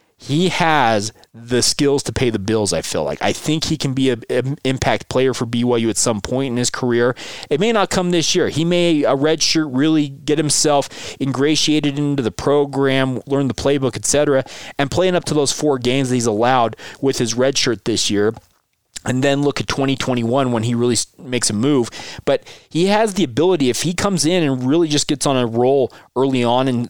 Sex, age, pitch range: male, 20-39, 120-150 Hz